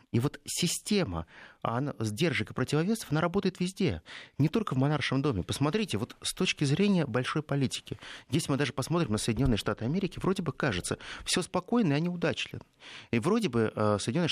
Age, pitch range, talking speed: 30-49, 115-165 Hz, 170 wpm